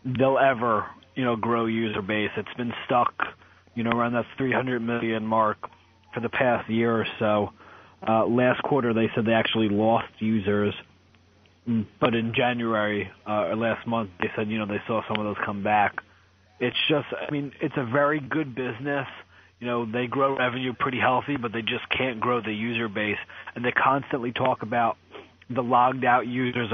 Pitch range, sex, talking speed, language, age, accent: 110-125 Hz, male, 185 wpm, English, 30-49, American